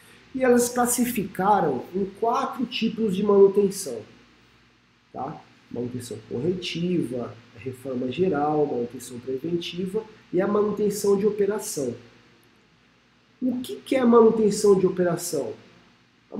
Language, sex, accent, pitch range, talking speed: Portuguese, male, Brazilian, 170-225 Hz, 110 wpm